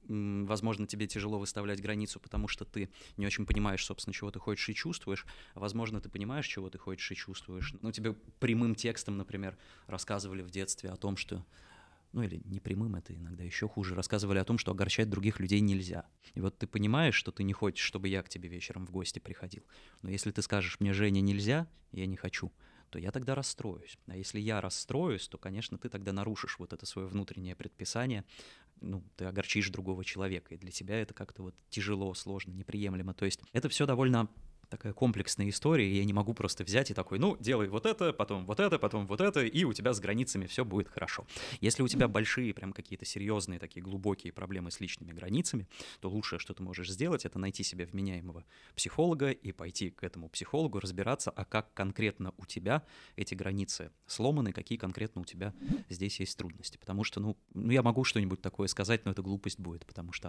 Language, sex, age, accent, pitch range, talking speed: Russian, male, 20-39, native, 95-110 Hz, 205 wpm